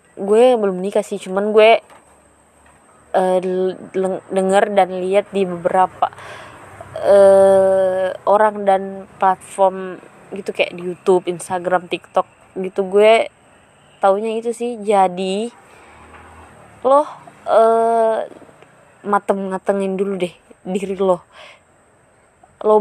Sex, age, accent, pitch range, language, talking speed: female, 20-39, native, 200-260 Hz, Indonesian, 95 wpm